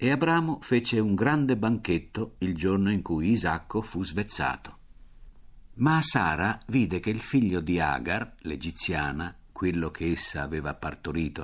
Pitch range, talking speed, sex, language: 75-110 Hz, 140 wpm, male, Italian